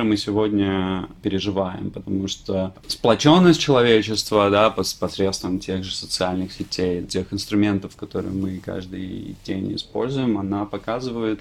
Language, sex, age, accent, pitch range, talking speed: Russian, male, 20-39, native, 100-115 Hz, 115 wpm